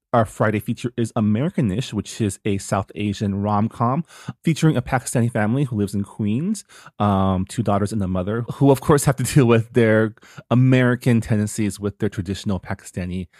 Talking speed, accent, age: 175 wpm, American, 30-49